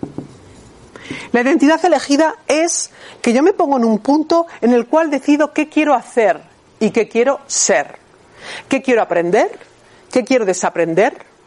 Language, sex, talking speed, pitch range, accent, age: Spanish, female, 145 wpm, 195-280 Hz, Spanish, 50-69